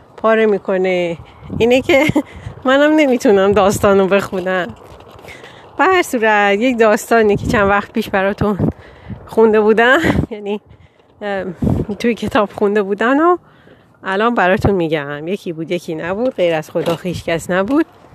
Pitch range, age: 185-255 Hz, 30-49